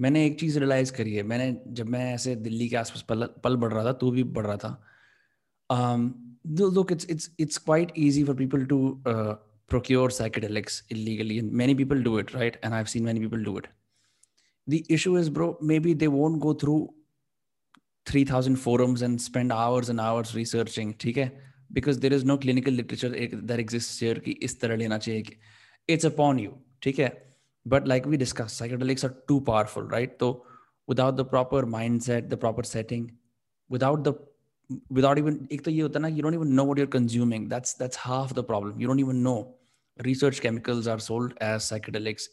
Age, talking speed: 20-39, 185 wpm